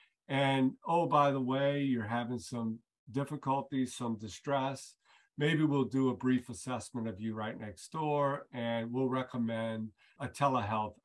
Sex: male